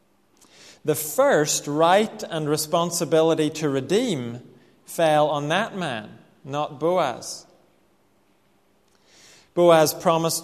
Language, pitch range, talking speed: English, 140-180 Hz, 85 wpm